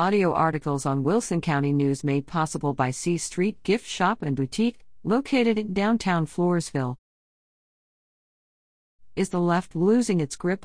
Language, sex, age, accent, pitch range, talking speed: English, female, 50-69, American, 145-195 Hz, 140 wpm